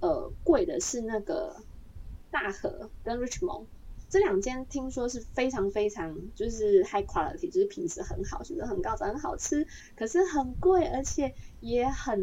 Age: 20-39